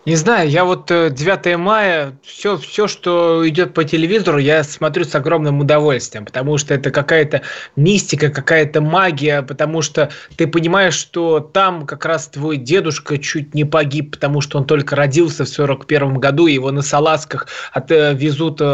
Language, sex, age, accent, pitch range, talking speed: Russian, male, 20-39, native, 145-165 Hz, 155 wpm